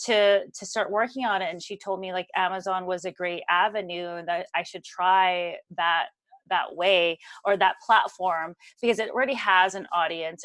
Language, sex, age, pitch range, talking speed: English, female, 30-49, 185-235 Hz, 190 wpm